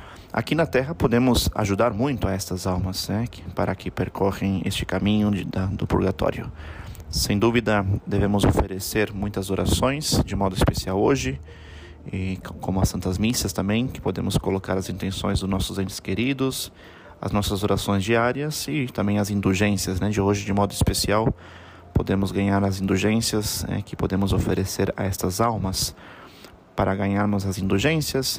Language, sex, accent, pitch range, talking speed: Portuguese, male, Brazilian, 95-110 Hz, 155 wpm